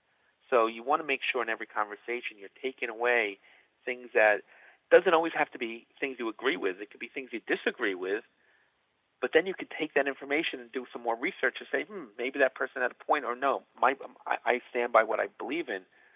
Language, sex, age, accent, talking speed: English, male, 40-59, American, 225 wpm